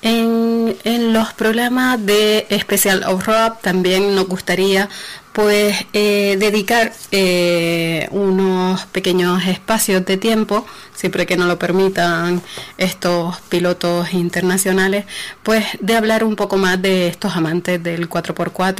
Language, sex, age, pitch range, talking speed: Spanish, female, 30-49, 175-215 Hz, 120 wpm